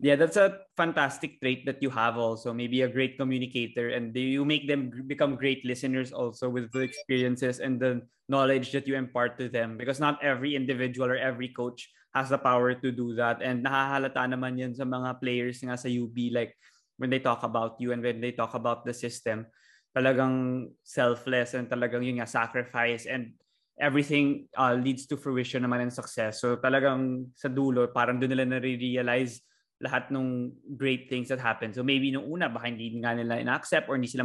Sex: male